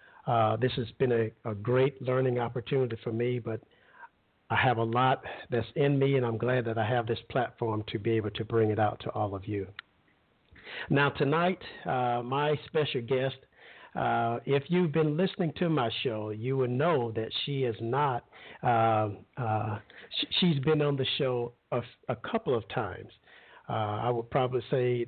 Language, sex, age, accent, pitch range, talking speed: English, male, 50-69, American, 115-150 Hz, 180 wpm